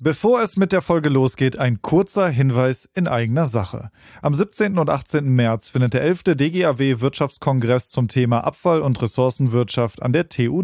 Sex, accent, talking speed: male, German, 165 wpm